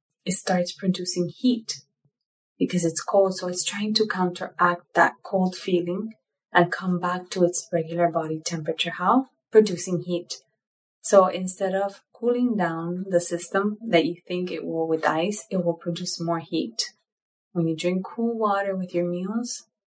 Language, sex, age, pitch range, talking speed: English, female, 20-39, 175-205 Hz, 160 wpm